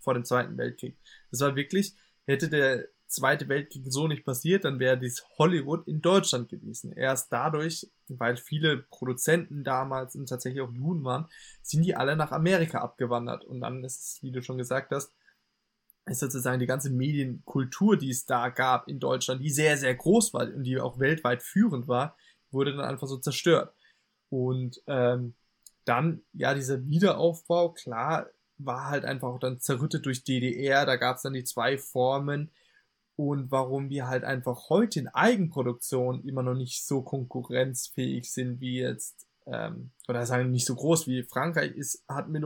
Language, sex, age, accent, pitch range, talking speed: German, male, 20-39, German, 125-150 Hz, 170 wpm